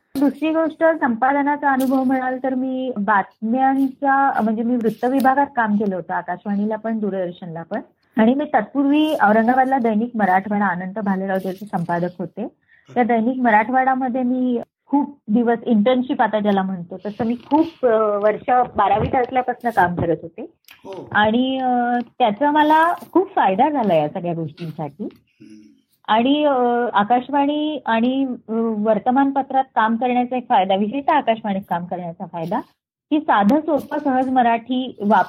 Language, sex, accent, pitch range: Marathi, female, native, 200-265 Hz